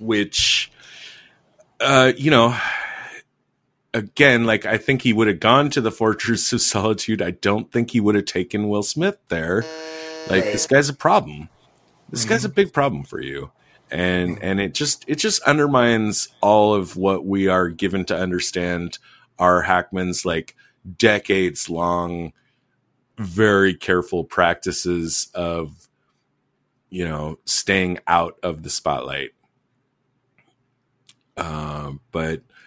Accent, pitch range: American, 90-125 Hz